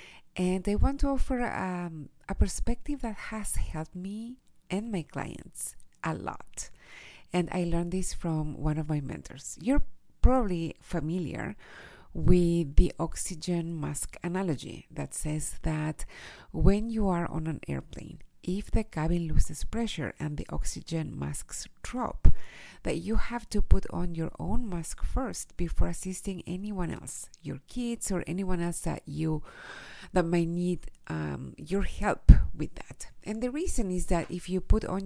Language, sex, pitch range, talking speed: English, female, 155-205 Hz, 155 wpm